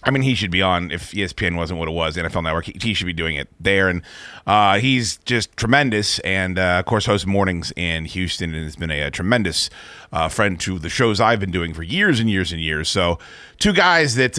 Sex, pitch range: male, 90-120 Hz